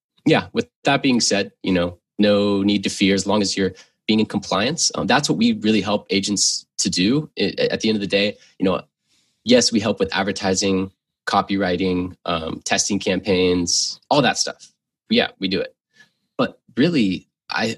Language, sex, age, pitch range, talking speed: English, male, 20-39, 95-110 Hz, 190 wpm